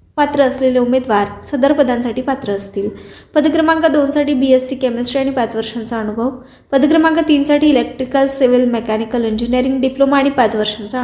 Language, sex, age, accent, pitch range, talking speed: Marathi, female, 20-39, native, 245-290 Hz, 140 wpm